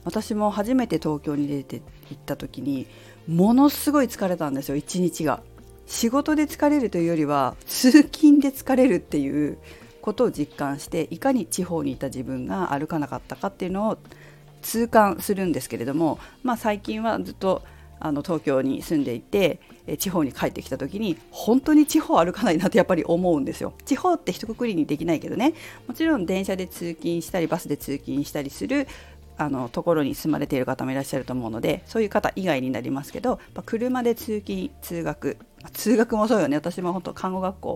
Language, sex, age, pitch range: Japanese, female, 50-69, 145-230 Hz